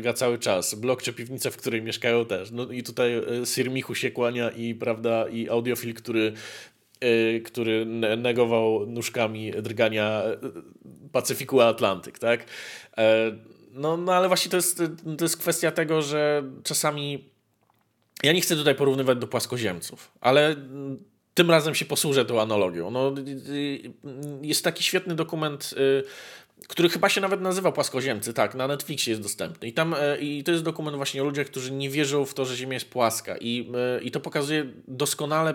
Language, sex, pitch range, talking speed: Polish, male, 120-155 Hz, 165 wpm